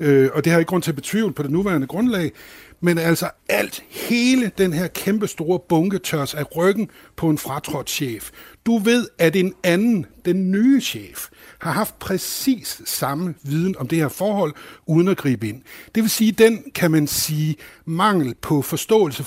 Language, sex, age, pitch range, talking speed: Danish, male, 60-79, 145-190 Hz, 180 wpm